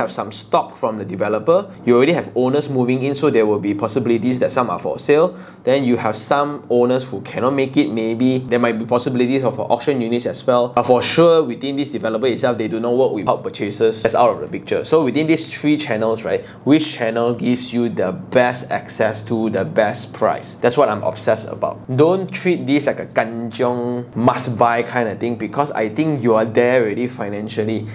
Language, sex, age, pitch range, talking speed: English, male, 20-39, 110-135 Hz, 215 wpm